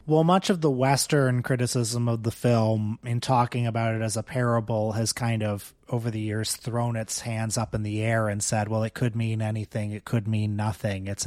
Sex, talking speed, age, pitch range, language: male, 220 wpm, 30-49, 110-125 Hz, English